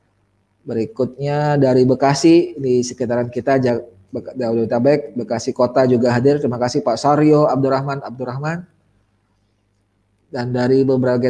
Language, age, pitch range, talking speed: Indonesian, 20-39, 105-150 Hz, 105 wpm